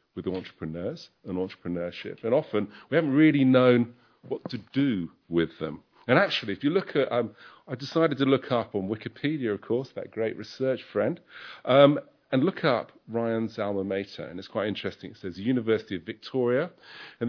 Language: English